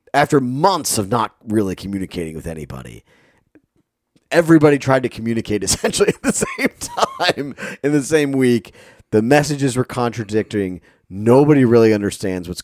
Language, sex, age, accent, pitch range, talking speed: English, male, 30-49, American, 95-130 Hz, 140 wpm